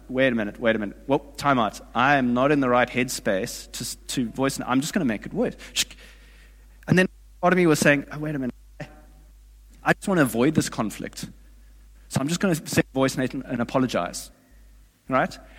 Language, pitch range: English, 130-195 Hz